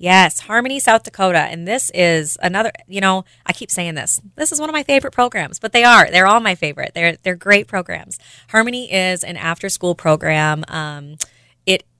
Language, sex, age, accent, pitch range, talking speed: English, female, 20-39, American, 155-190 Hz, 195 wpm